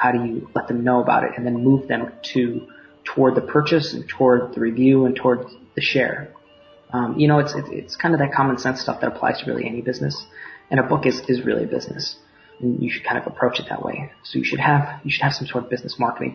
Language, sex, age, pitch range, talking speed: English, male, 20-39, 120-135 Hz, 255 wpm